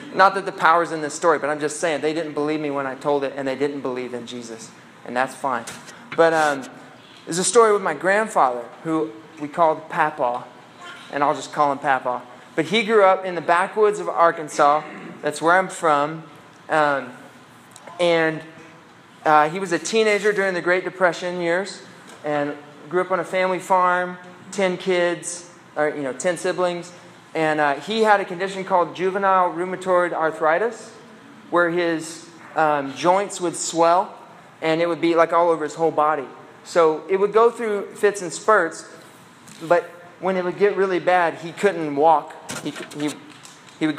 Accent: American